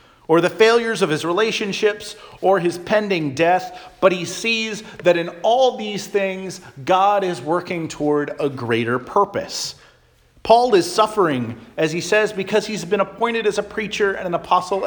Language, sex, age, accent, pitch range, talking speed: English, male, 40-59, American, 140-190 Hz, 165 wpm